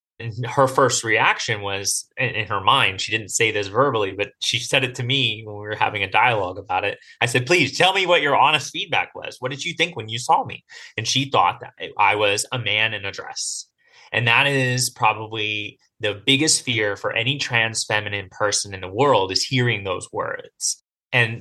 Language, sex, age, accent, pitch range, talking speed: English, male, 30-49, American, 110-135 Hz, 215 wpm